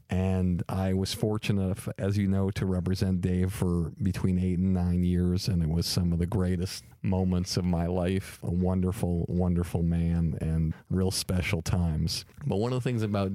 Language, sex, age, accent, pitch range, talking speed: English, male, 50-69, American, 95-120 Hz, 185 wpm